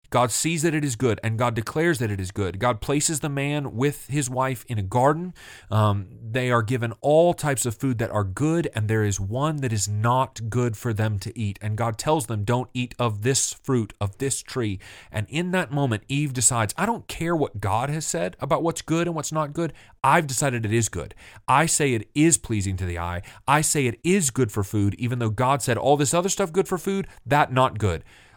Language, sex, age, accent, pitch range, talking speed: English, male, 30-49, American, 110-145 Hz, 235 wpm